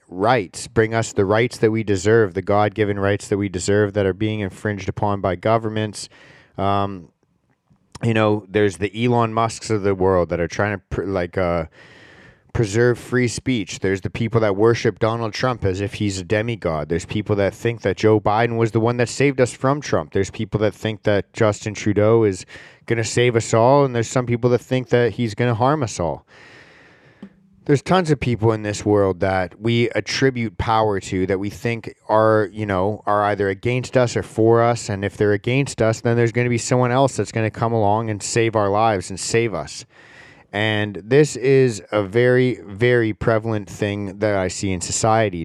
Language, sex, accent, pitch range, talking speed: English, male, American, 100-120 Hz, 200 wpm